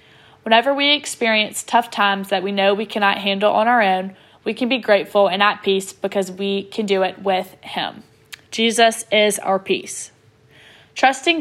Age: 10-29